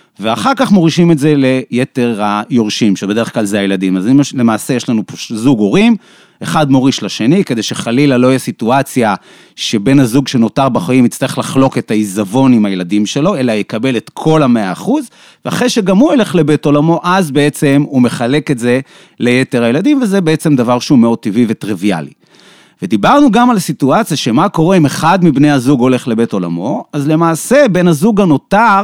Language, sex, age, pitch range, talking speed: Hebrew, male, 30-49, 120-170 Hz, 160 wpm